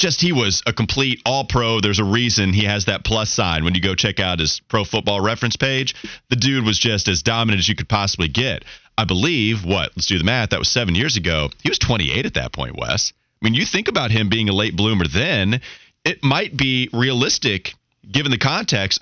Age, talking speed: 30-49, 230 wpm